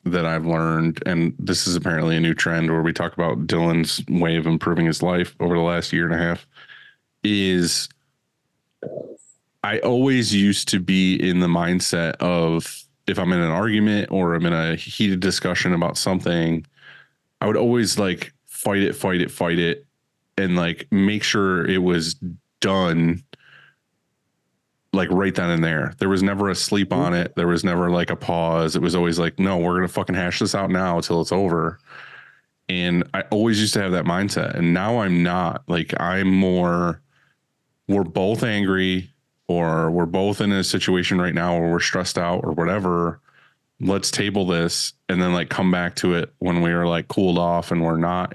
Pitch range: 85-95 Hz